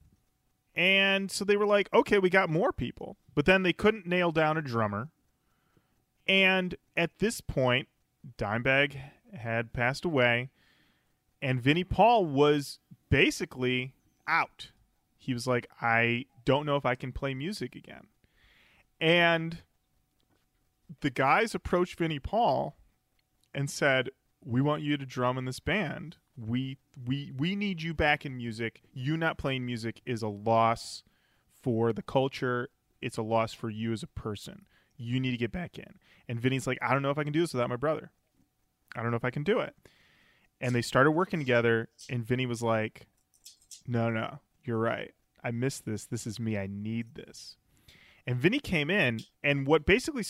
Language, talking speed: English, 170 wpm